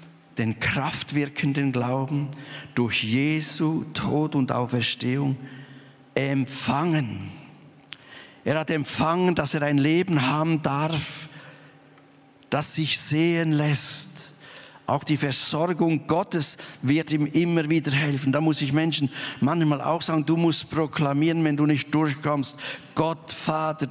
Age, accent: 50-69, German